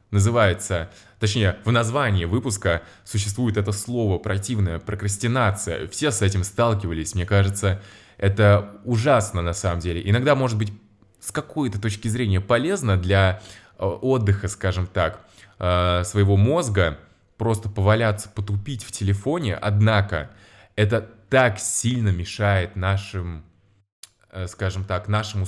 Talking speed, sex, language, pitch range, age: 115 wpm, male, Russian, 95-110 Hz, 20-39